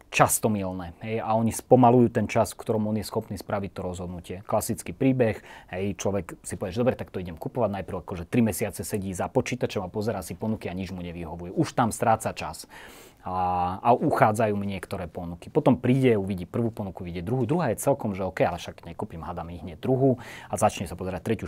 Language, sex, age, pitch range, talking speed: Slovak, male, 30-49, 100-125 Hz, 205 wpm